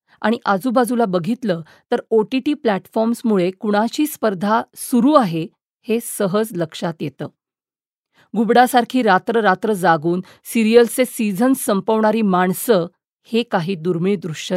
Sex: female